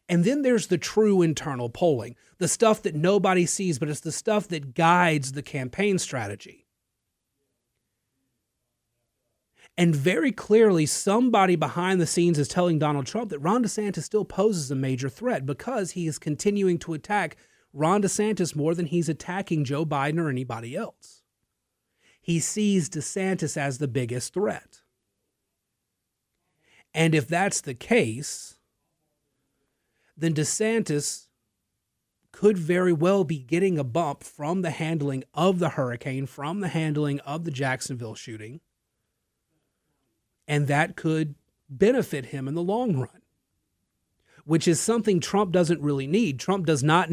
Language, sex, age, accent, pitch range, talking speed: English, male, 30-49, American, 140-190 Hz, 140 wpm